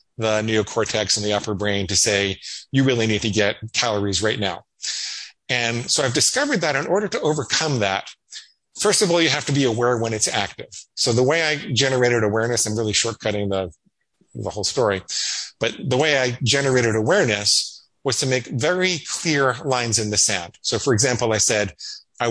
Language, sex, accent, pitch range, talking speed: English, male, American, 105-130 Hz, 190 wpm